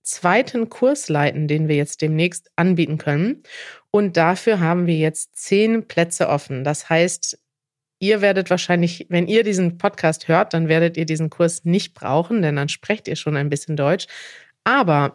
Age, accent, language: 30-49, German, German